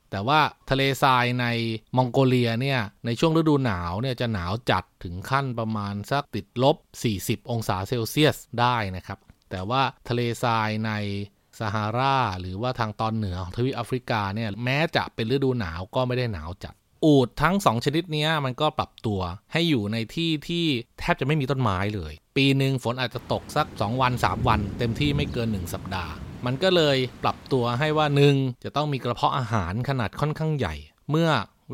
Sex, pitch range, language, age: male, 110-140 Hz, Thai, 20-39